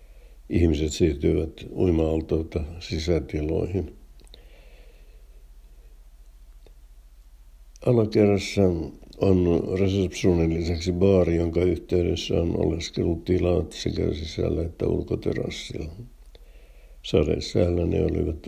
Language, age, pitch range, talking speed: Finnish, 60-79, 75-95 Hz, 70 wpm